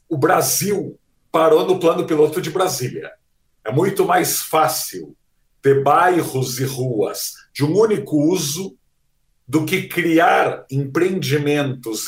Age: 60-79